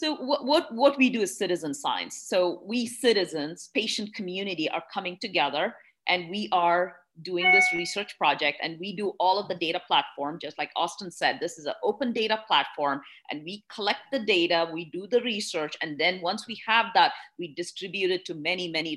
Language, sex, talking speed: English, female, 200 wpm